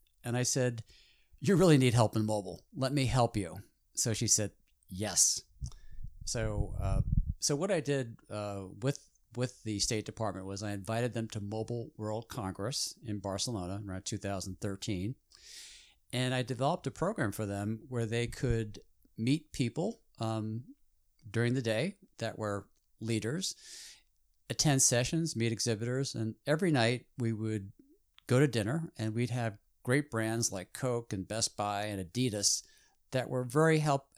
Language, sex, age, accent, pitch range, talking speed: English, male, 50-69, American, 105-130 Hz, 155 wpm